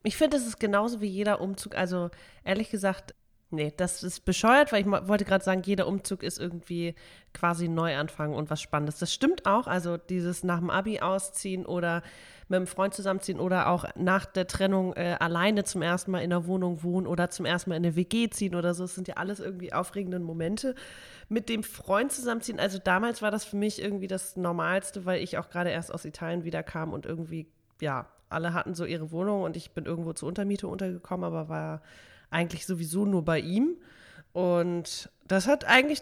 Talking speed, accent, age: 205 wpm, German, 30-49